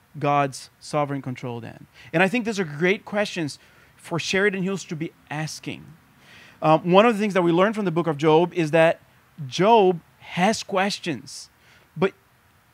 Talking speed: 170 wpm